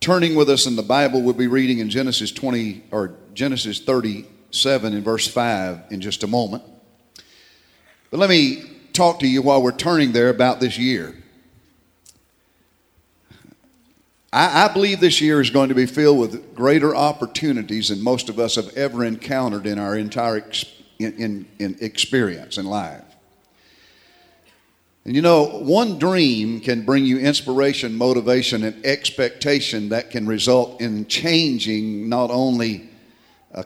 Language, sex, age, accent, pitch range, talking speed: English, male, 50-69, American, 105-140 Hz, 150 wpm